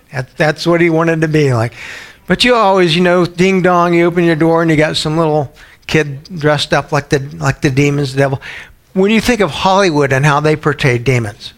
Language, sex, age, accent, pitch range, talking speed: English, male, 60-79, American, 120-150 Hz, 220 wpm